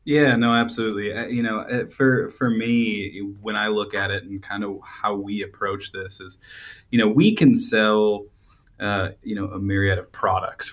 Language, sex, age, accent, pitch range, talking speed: English, male, 20-39, American, 95-115 Hz, 200 wpm